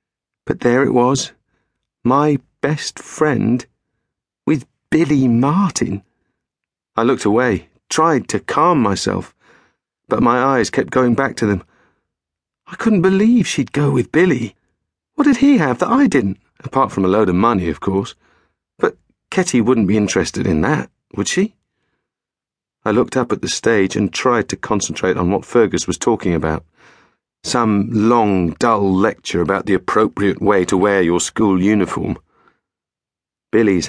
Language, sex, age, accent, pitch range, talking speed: English, male, 40-59, British, 95-140 Hz, 150 wpm